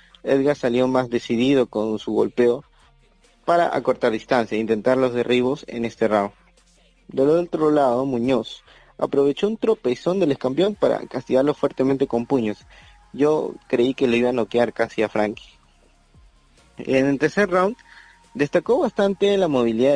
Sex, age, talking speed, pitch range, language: male, 30-49, 145 wpm, 120-155 Hz, Spanish